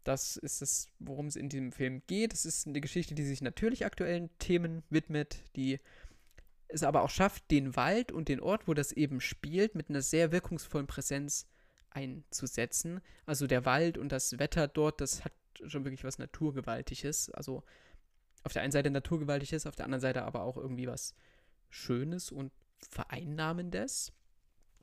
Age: 20-39